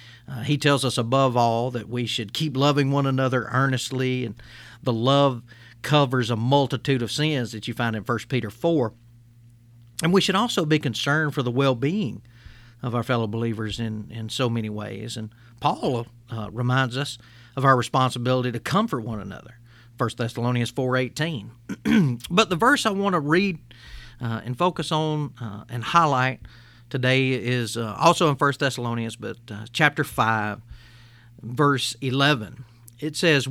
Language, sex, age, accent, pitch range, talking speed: English, male, 40-59, American, 115-145 Hz, 165 wpm